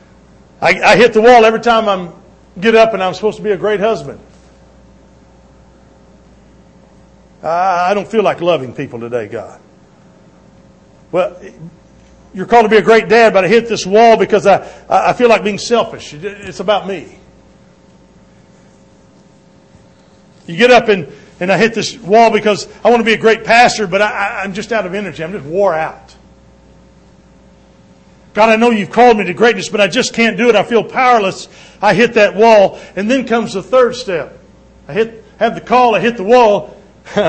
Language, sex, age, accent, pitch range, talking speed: English, male, 50-69, American, 180-225 Hz, 180 wpm